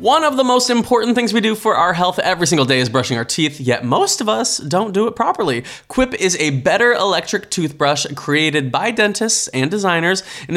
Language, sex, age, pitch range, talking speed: English, male, 20-39, 145-215 Hz, 215 wpm